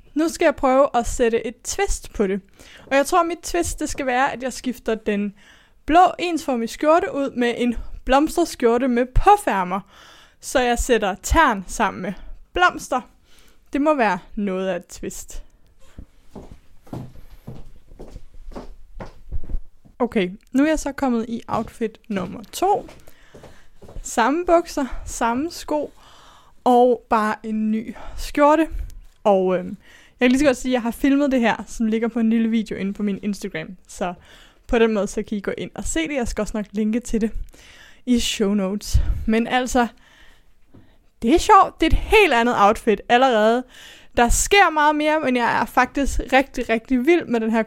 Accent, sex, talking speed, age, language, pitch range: native, female, 170 wpm, 20-39, Danish, 220-290 Hz